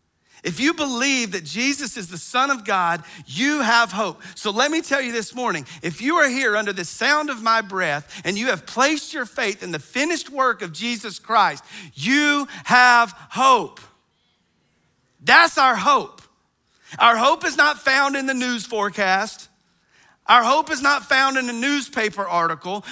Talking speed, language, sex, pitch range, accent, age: 175 wpm, English, male, 180-270 Hz, American, 40-59